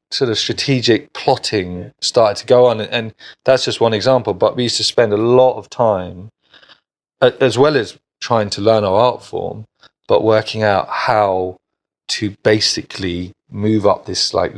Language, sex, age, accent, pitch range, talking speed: English, male, 30-49, British, 100-120 Hz, 175 wpm